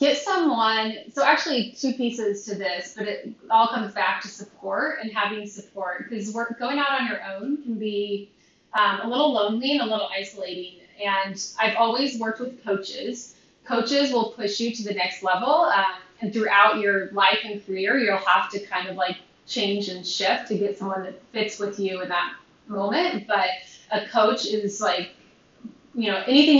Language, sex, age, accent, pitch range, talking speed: English, female, 20-39, American, 195-230 Hz, 185 wpm